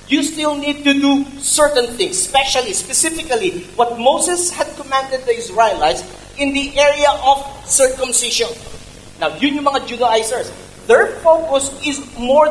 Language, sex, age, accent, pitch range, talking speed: English, male, 40-59, Filipino, 245-320 Hz, 140 wpm